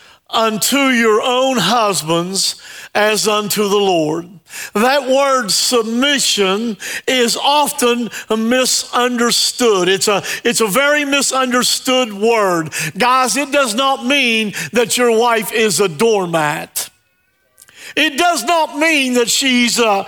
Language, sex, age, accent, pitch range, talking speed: English, male, 50-69, American, 195-265 Hz, 110 wpm